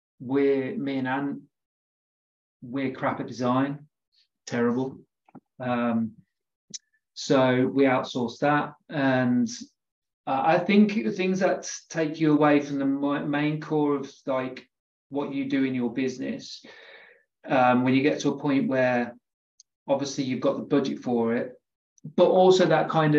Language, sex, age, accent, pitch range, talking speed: English, male, 30-49, British, 125-145 Hz, 140 wpm